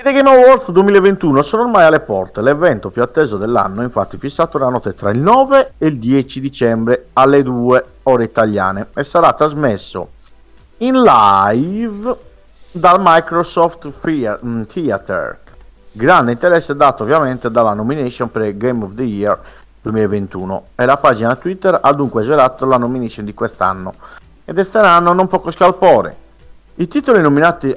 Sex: male